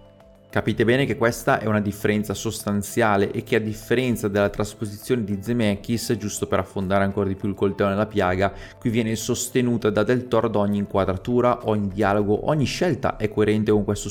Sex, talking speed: male, 185 wpm